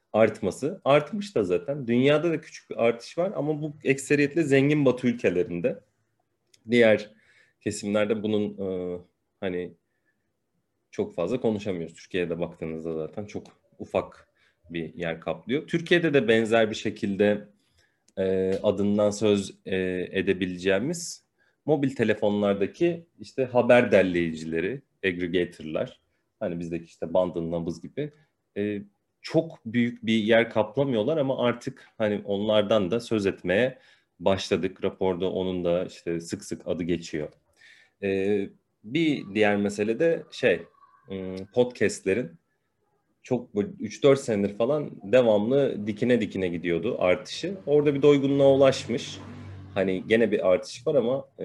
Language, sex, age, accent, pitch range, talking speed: Turkish, male, 30-49, native, 95-125 Hz, 120 wpm